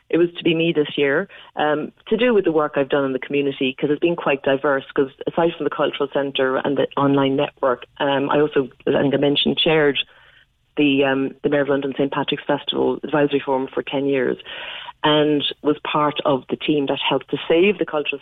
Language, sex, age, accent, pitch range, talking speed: English, female, 30-49, Irish, 140-165 Hz, 215 wpm